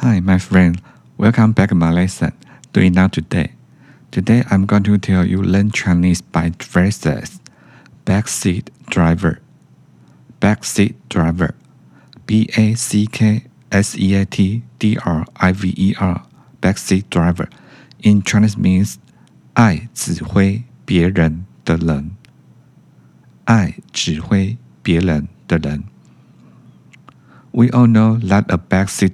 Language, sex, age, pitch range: Chinese, male, 50-69, 85-105 Hz